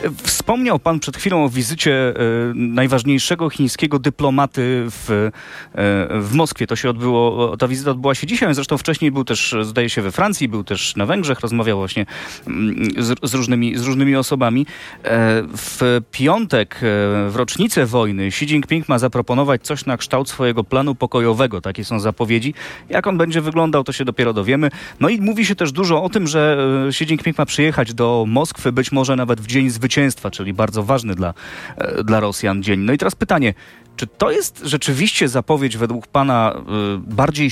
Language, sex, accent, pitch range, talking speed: Polish, male, native, 115-150 Hz, 170 wpm